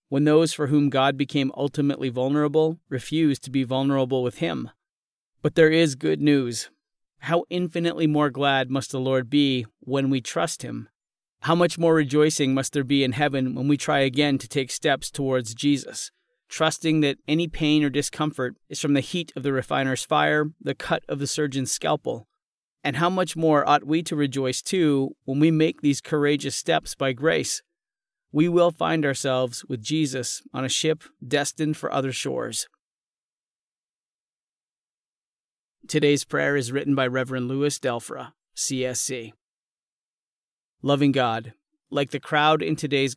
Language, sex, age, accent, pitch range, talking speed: English, male, 40-59, American, 130-155 Hz, 160 wpm